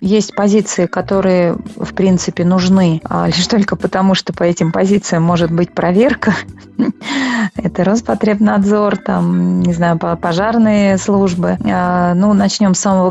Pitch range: 175-215 Hz